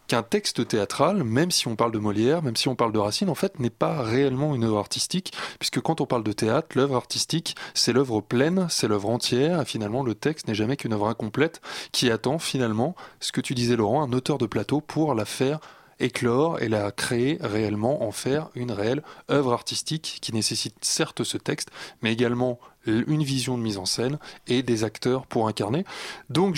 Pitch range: 115-155 Hz